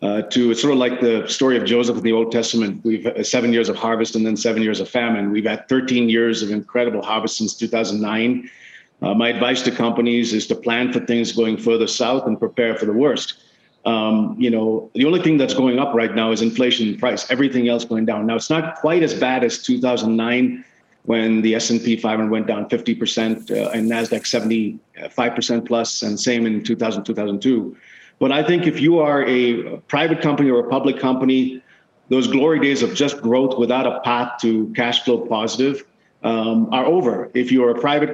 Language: English